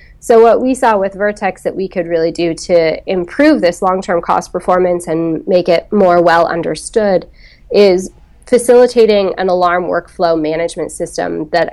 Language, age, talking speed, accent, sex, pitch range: English, 20-39, 160 wpm, American, female, 170-195 Hz